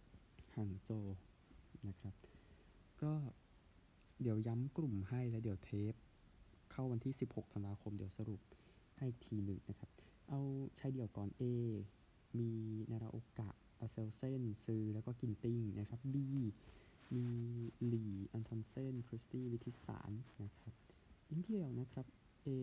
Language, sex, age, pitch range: Thai, male, 20-39, 105-120 Hz